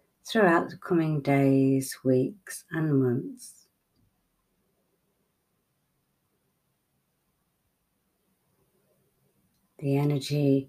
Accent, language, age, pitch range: British, English, 50-69, 130-145 Hz